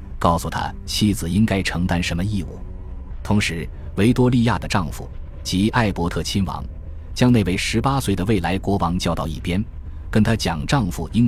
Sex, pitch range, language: male, 80-105 Hz, Chinese